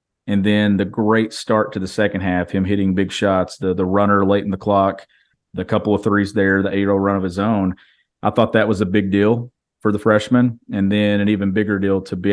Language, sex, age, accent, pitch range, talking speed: English, male, 40-59, American, 100-115 Hz, 240 wpm